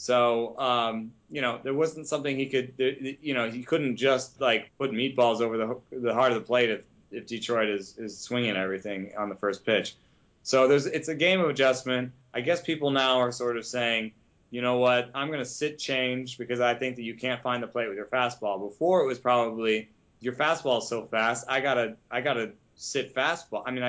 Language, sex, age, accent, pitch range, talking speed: English, male, 20-39, American, 105-130 Hz, 220 wpm